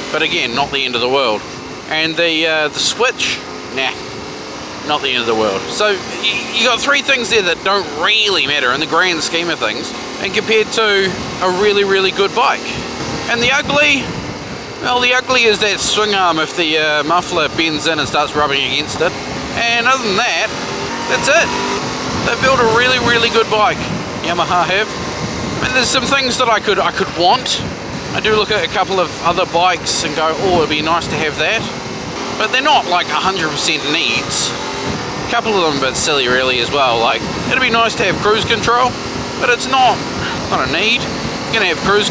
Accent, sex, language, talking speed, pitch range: Australian, male, English, 205 wpm, 170-235 Hz